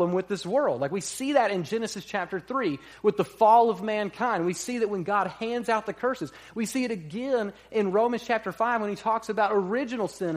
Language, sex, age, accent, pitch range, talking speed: English, male, 40-59, American, 155-220 Hz, 225 wpm